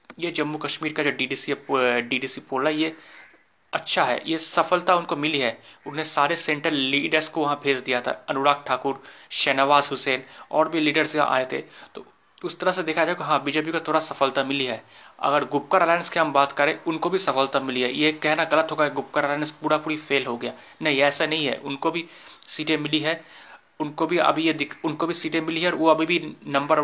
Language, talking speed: Hindi, 220 wpm